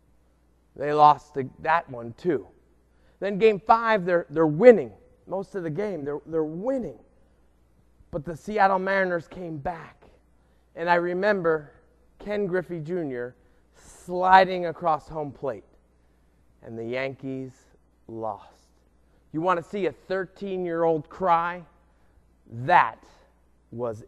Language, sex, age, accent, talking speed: English, male, 30-49, American, 120 wpm